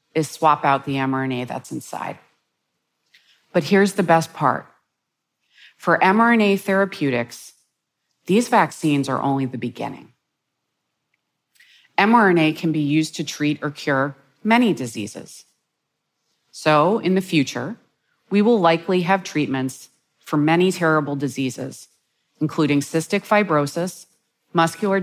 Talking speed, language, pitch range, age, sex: 115 wpm, English, 135-185 Hz, 30-49, female